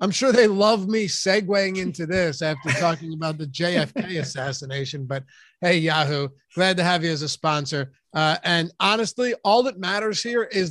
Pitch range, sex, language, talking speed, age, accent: 160-195 Hz, male, English, 180 wpm, 30-49, American